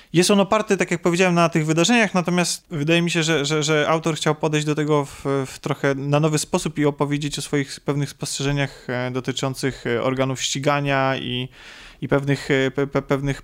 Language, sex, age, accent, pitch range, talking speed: Polish, male, 20-39, native, 135-155 Hz, 180 wpm